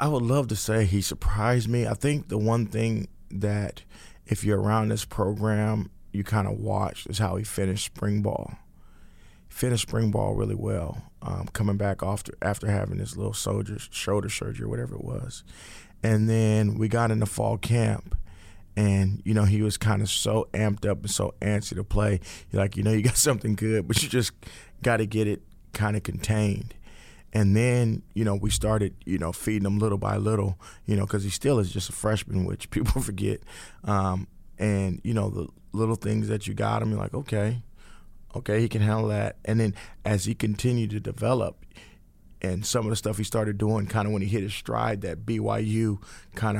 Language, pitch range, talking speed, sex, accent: English, 100-110 Hz, 205 wpm, male, American